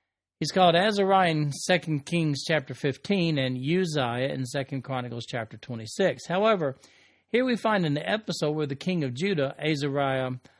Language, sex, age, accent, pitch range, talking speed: English, male, 50-69, American, 130-180 Hz, 155 wpm